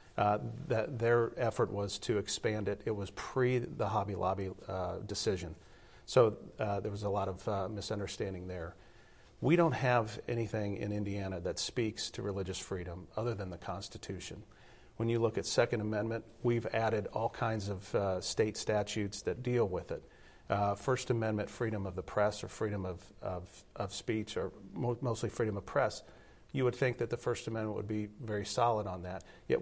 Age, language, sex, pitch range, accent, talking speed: 40-59, English, male, 95-115 Hz, American, 185 wpm